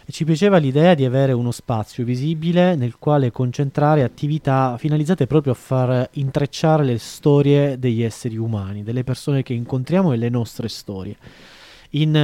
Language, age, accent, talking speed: Italian, 20-39, native, 150 wpm